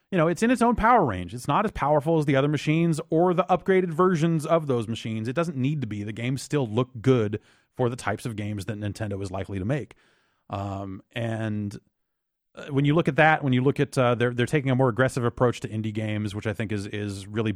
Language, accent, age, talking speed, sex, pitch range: English, American, 30-49, 245 wpm, male, 105-140 Hz